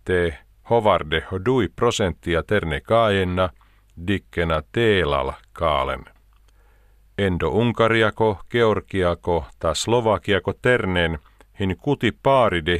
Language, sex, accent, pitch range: Finnish, male, native, 85-110 Hz